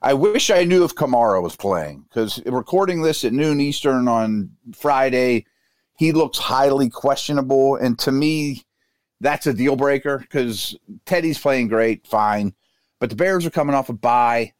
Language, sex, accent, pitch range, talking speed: English, male, American, 110-135 Hz, 165 wpm